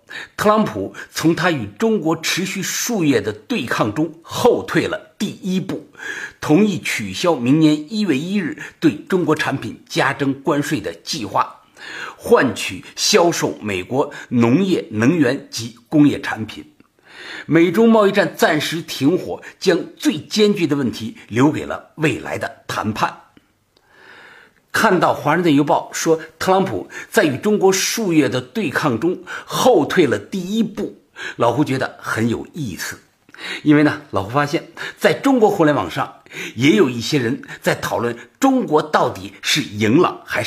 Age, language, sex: 50-69, Chinese, male